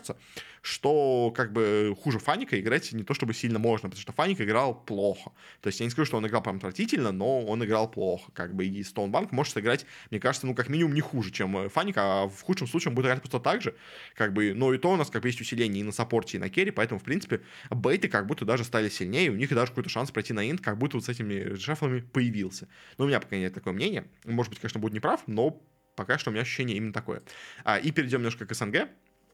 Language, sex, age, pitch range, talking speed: Russian, male, 20-39, 105-135 Hz, 255 wpm